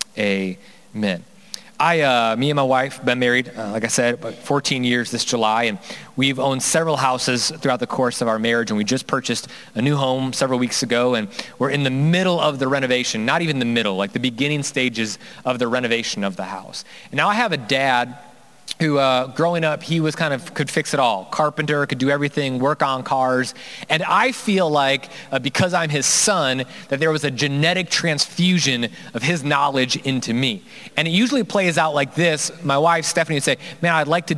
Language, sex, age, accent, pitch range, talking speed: English, male, 30-49, American, 130-170 Hz, 210 wpm